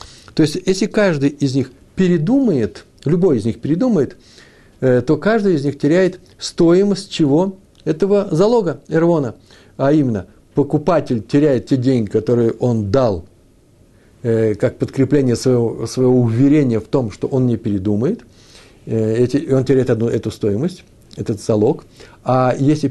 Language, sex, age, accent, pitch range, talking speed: Russian, male, 60-79, native, 110-150 Hz, 140 wpm